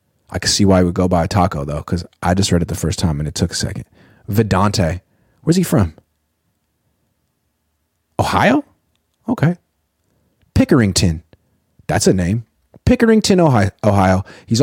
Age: 30-49